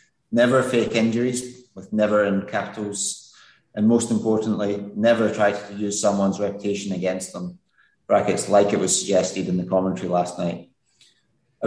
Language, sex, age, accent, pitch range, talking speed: English, male, 30-49, British, 100-115 Hz, 150 wpm